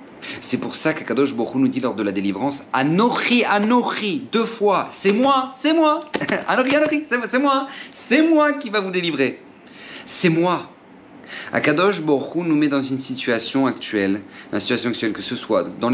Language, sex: French, male